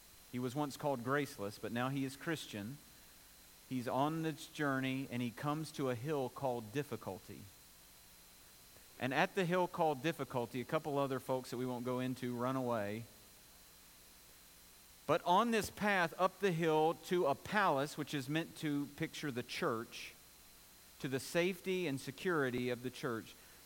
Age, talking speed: 50-69, 160 wpm